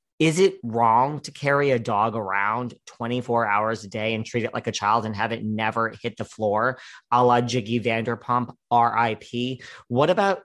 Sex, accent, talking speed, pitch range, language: male, American, 185 wpm, 110-135 Hz, English